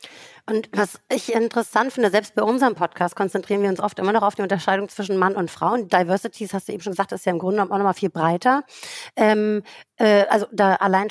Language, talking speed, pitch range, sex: German, 245 wpm, 190-215 Hz, female